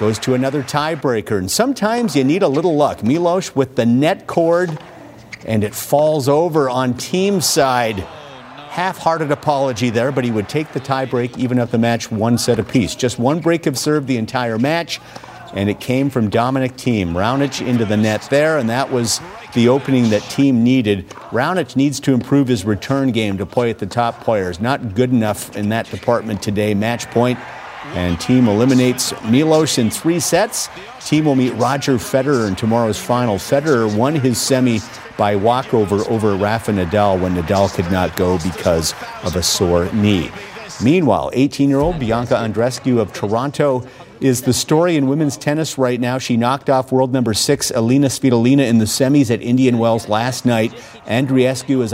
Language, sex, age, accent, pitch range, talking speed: English, male, 50-69, American, 110-140 Hz, 180 wpm